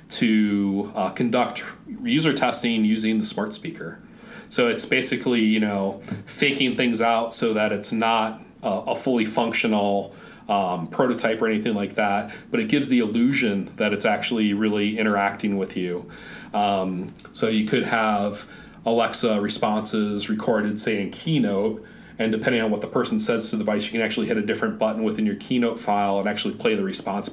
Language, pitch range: English, 105-125 Hz